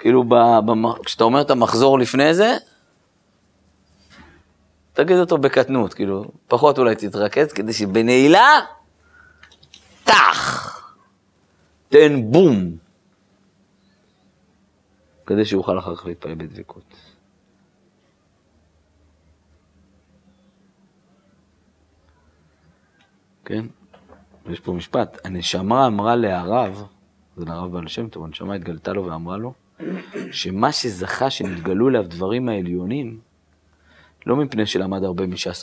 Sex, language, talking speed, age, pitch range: male, Hebrew, 90 wpm, 50-69, 85-115 Hz